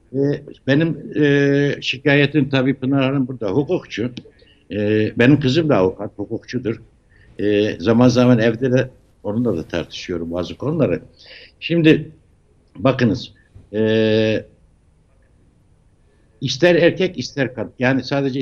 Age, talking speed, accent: 60-79, 95 wpm, native